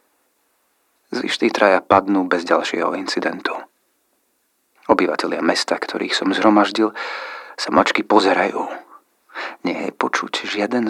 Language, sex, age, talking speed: Slovak, male, 40-59, 105 wpm